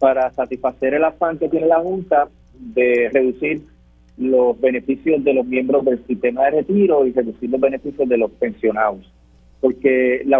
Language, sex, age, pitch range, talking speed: Spanish, male, 40-59, 120-165 Hz, 160 wpm